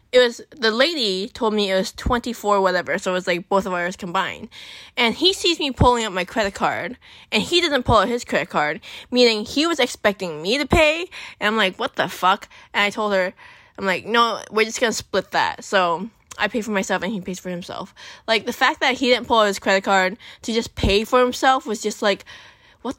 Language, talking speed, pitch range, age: English, 235 wpm, 185-250 Hz, 20-39